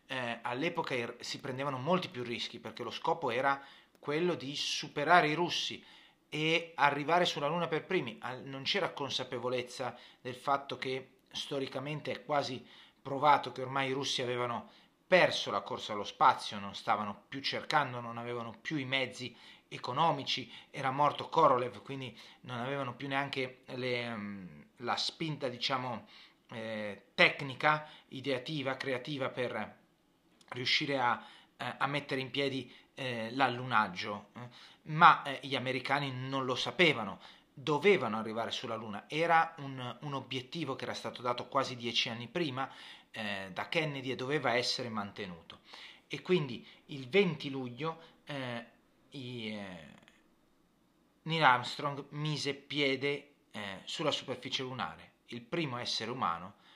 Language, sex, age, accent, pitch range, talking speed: Italian, male, 30-49, native, 120-145 Hz, 130 wpm